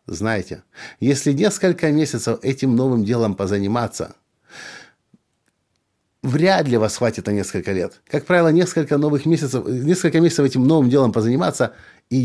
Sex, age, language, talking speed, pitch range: male, 50-69, Russian, 125 wpm, 110-160 Hz